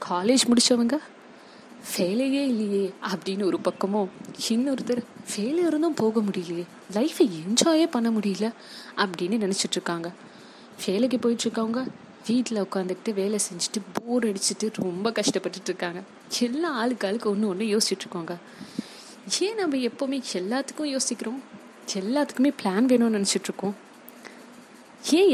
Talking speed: 110 wpm